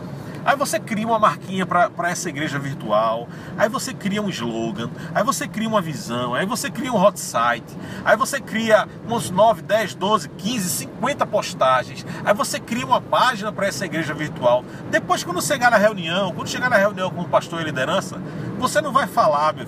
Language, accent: Portuguese, Brazilian